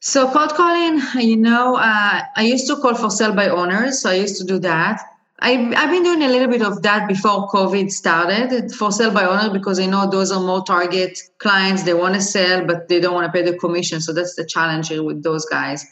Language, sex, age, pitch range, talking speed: English, female, 30-49, 175-225 Hz, 235 wpm